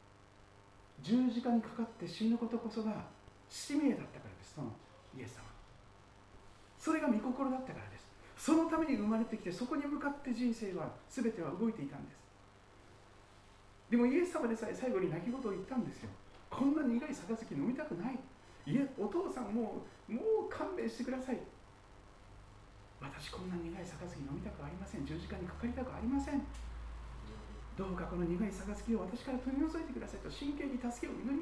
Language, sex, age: Japanese, male, 40-59